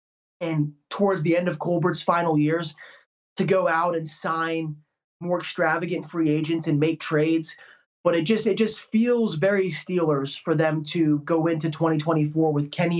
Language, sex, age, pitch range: English, male, 20-39, 155-185 Hz